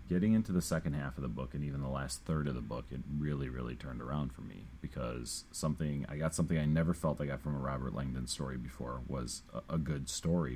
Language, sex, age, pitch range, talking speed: English, male, 30-49, 70-85 Hz, 245 wpm